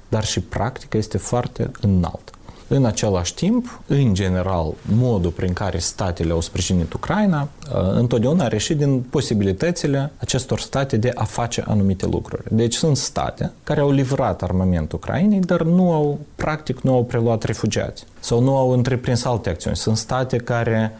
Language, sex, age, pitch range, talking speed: Romanian, male, 30-49, 100-125 Hz, 155 wpm